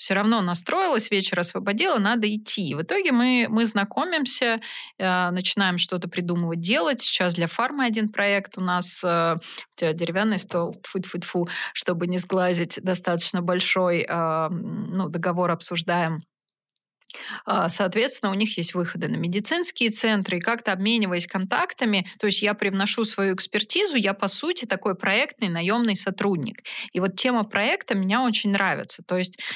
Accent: native